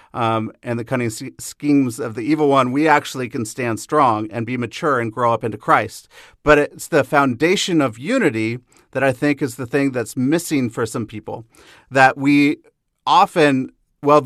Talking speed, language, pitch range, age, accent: 180 wpm, English, 120-150 Hz, 40-59, American